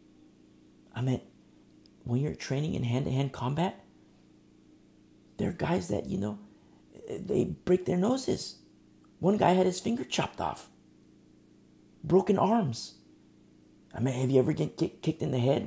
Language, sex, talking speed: English, male, 140 wpm